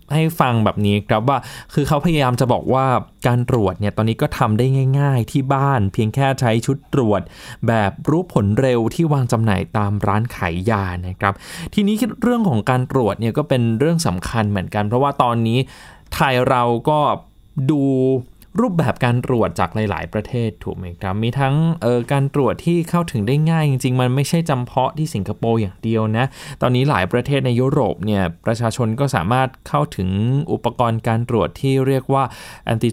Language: Thai